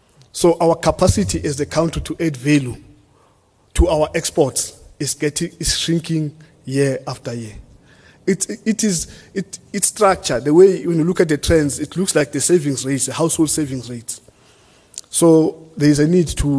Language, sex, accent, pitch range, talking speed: English, male, South African, 135-165 Hz, 175 wpm